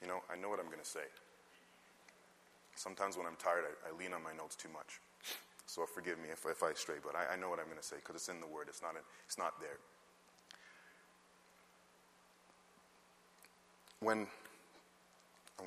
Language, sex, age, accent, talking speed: English, male, 30-49, American, 185 wpm